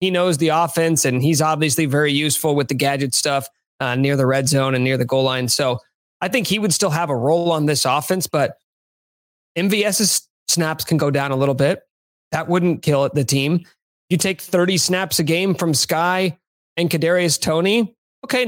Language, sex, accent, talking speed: English, male, American, 200 wpm